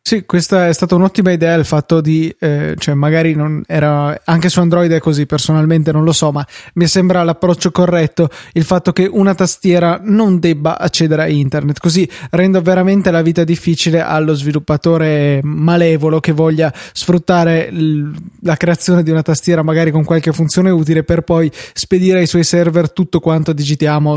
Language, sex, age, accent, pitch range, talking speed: Italian, male, 20-39, native, 155-175 Hz, 170 wpm